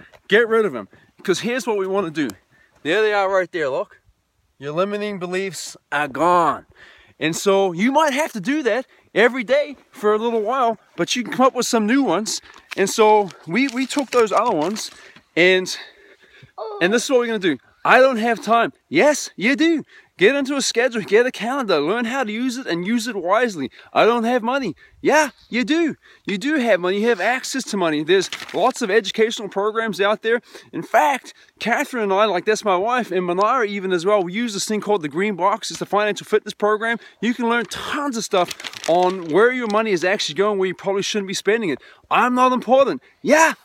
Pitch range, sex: 185-250 Hz, male